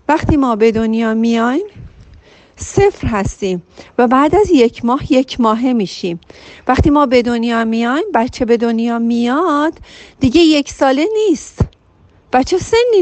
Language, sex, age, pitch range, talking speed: Persian, female, 40-59, 215-290 Hz, 140 wpm